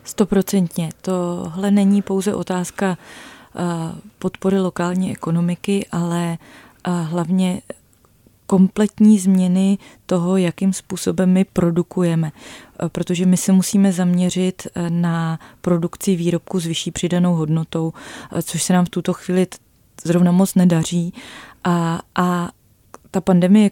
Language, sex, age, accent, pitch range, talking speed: Czech, female, 20-39, native, 170-185 Hz, 105 wpm